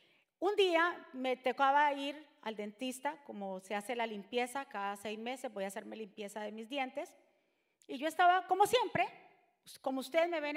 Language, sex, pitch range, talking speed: Spanish, female, 225-315 Hz, 175 wpm